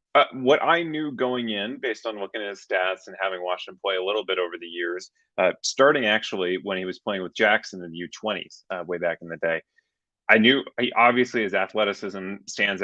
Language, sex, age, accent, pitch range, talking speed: English, male, 30-49, American, 100-125 Hz, 225 wpm